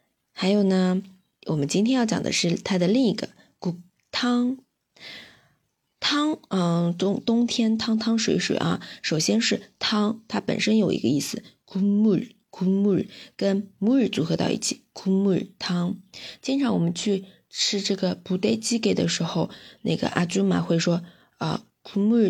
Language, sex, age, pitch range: Chinese, female, 20-39, 185-235 Hz